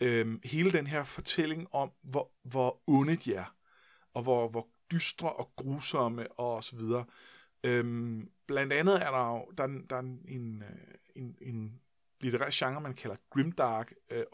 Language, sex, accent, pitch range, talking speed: Danish, male, native, 125-170 Hz, 155 wpm